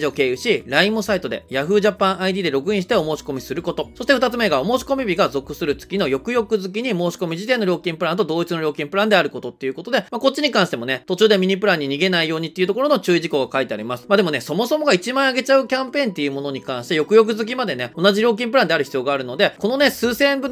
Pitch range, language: 145-240 Hz, Japanese